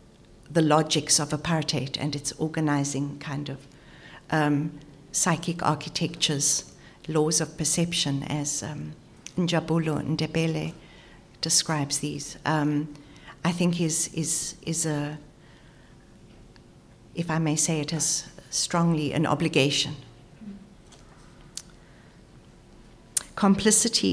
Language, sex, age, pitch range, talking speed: English, female, 60-79, 145-175 Hz, 95 wpm